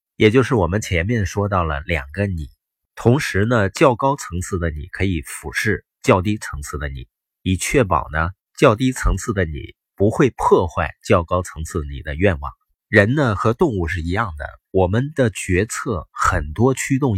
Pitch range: 80-115 Hz